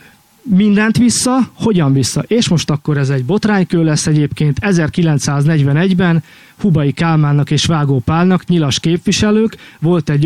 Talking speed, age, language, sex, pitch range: 130 wpm, 20-39, Hungarian, male, 150-180 Hz